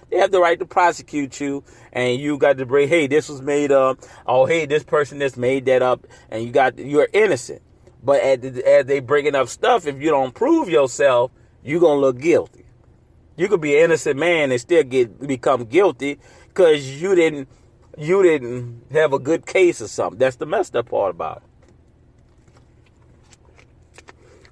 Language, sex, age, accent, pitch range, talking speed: English, male, 40-59, American, 120-160 Hz, 185 wpm